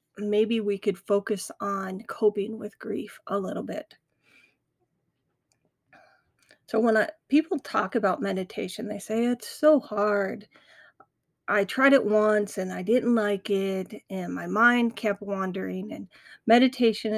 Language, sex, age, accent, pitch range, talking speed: English, female, 40-59, American, 200-225 Hz, 135 wpm